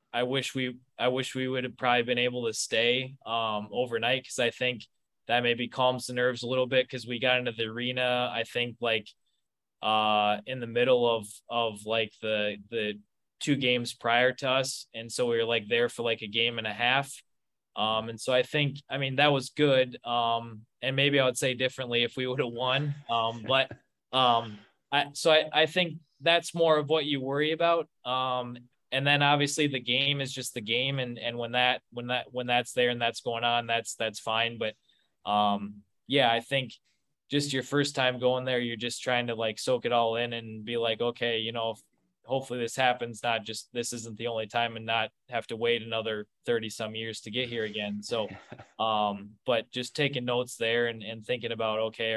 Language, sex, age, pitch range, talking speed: English, male, 20-39, 115-130 Hz, 215 wpm